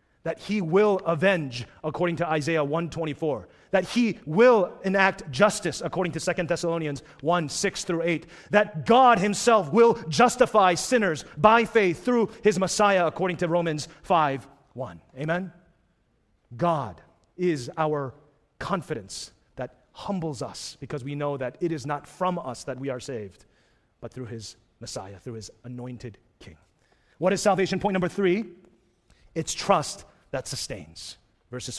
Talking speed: 140 wpm